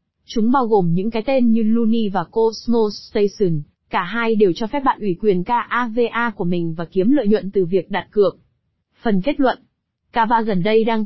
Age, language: 20-39, Vietnamese